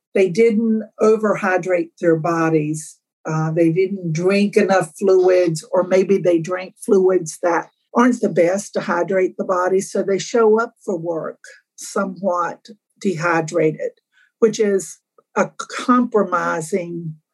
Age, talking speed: 60-79, 125 wpm